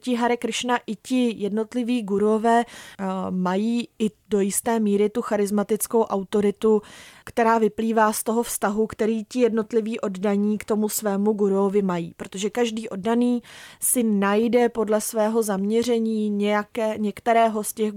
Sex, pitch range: female, 200-225 Hz